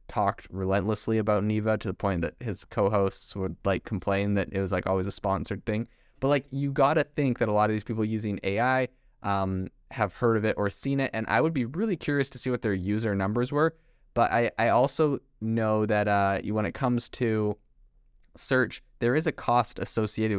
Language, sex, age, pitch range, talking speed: English, male, 20-39, 100-125 Hz, 210 wpm